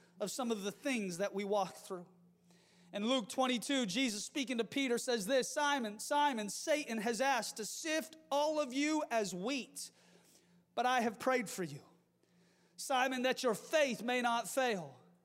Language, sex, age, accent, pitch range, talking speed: English, male, 30-49, American, 230-355 Hz, 170 wpm